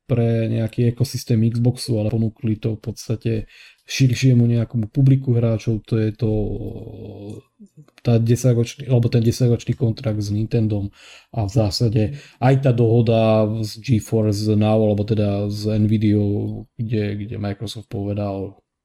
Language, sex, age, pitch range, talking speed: Slovak, male, 20-39, 110-120 Hz, 125 wpm